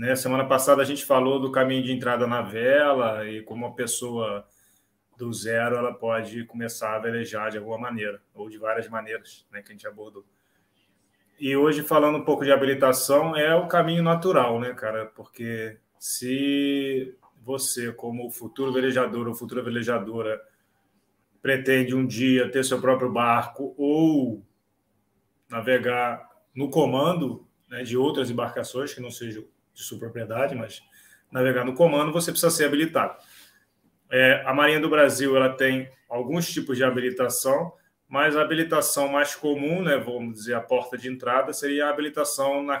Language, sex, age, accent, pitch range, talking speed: Portuguese, male, 20-39, Brazilian, 115-140 Hz, 155 wpm